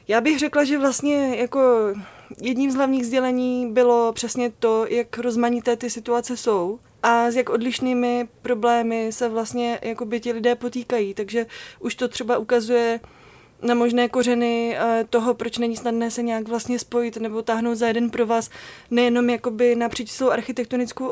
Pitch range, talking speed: 230-245 Hz, 155 wpm